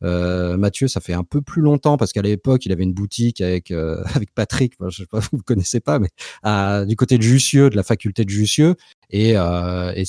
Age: 40-59